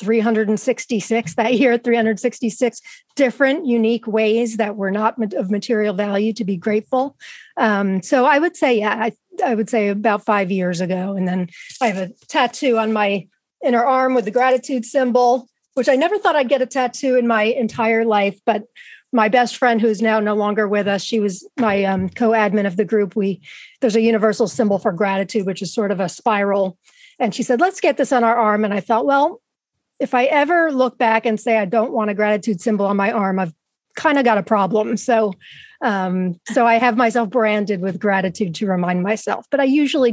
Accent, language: American, English